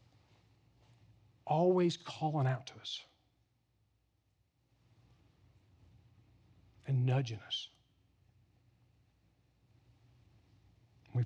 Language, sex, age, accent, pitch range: English, male, 50-69, American, 115-145 Hz